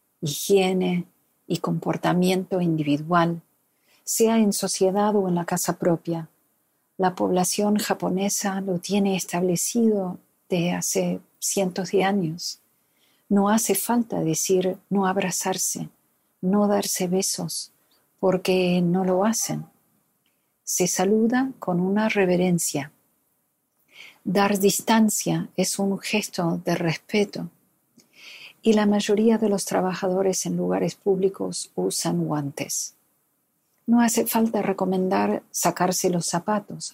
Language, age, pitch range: Spanish, 50-69, 175-200 Hz